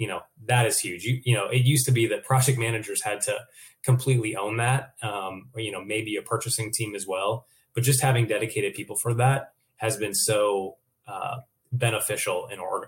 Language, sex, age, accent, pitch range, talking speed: English, male, 20-39, American, 105-130 Hz, 205 wpm